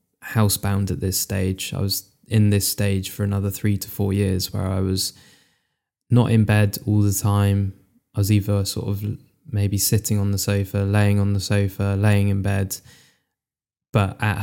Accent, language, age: British, English, 10-29